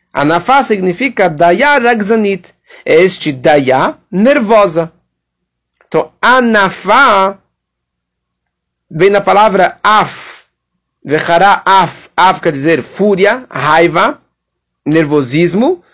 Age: 40-59